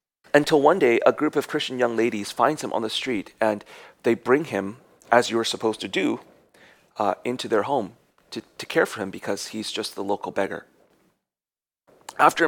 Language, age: English, 30-49